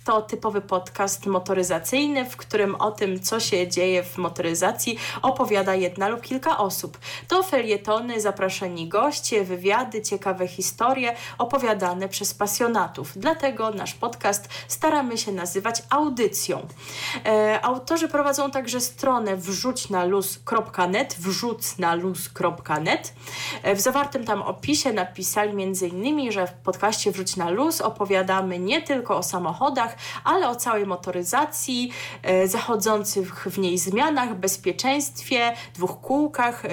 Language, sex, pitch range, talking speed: Polish, female, 185-255 Hz, 115 wpm